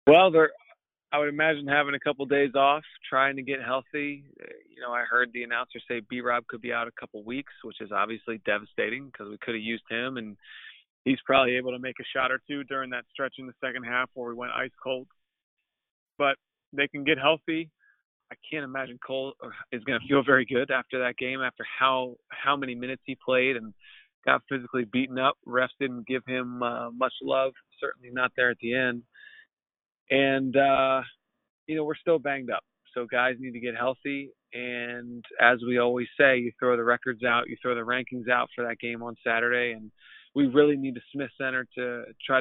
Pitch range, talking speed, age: 120-140 Hz, 205 wpm, 30-49